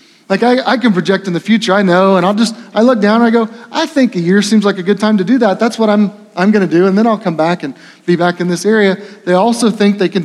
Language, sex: English, male